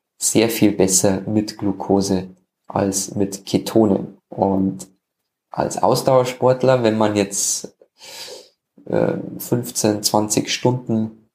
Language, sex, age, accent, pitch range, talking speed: German, male, 20-39, German, 100-120 Hz, 90 wpm